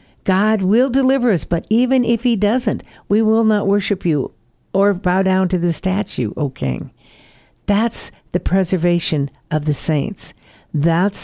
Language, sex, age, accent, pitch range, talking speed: English, female, 60-79, American, 175-220 Hz, 155 wpm